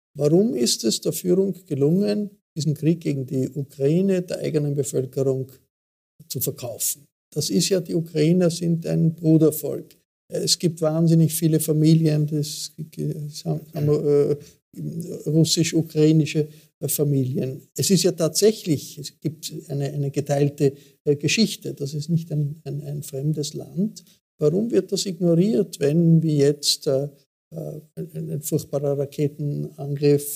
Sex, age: male, 50-69